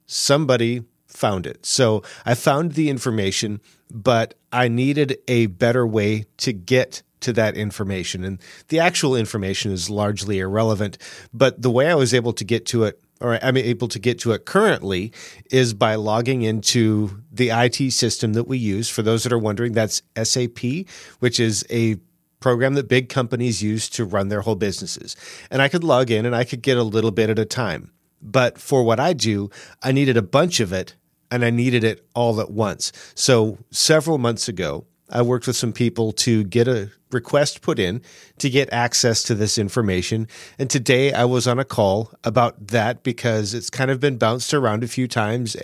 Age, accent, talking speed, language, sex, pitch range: 40-59, American, 195 wpm, English, male, 110-130 Hz